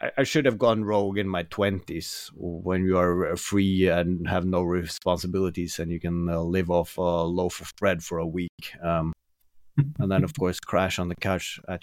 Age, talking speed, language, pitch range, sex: 30-49, 195 wpm, English, 90-105 Hz, male